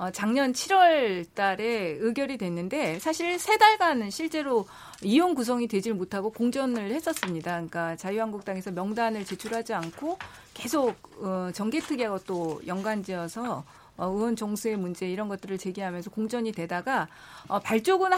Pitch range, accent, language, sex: 195-280 Hz, native, Korean, female